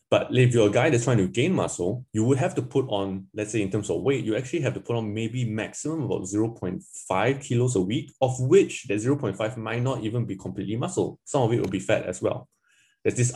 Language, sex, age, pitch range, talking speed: English, male, 20-39, 100-125 Hz, 245 wpm